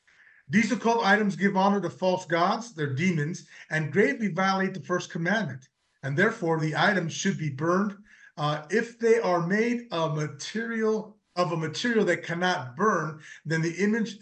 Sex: male